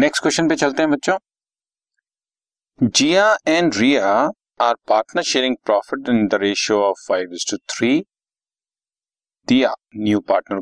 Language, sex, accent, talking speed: Hindi, male, native, 115 wpm